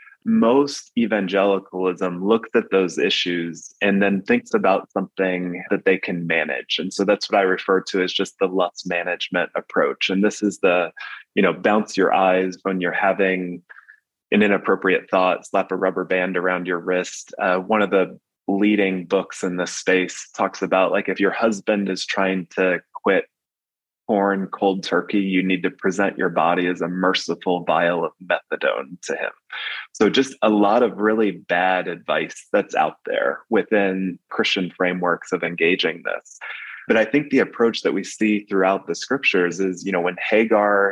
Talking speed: 175 wpm